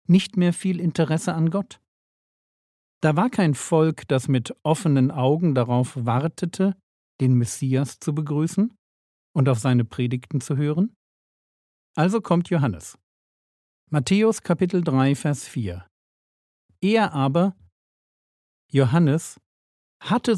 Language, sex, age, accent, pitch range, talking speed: German, male, 50-69, German, 125-175 Hz, 110 wpm